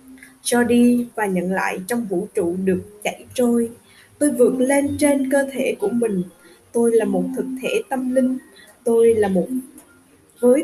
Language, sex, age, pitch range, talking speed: Vietnamese, female, 10-29, 205-270 Hz, 170 wpm